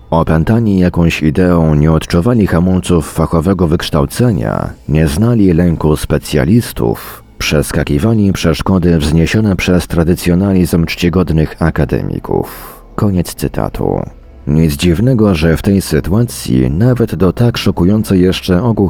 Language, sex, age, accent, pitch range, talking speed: Polish, male, 40-59, native, 80-95 Hz, 105 wpm